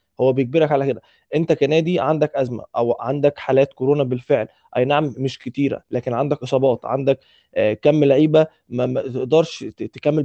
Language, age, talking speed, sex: Arabic, 20-39, 150 wpm, male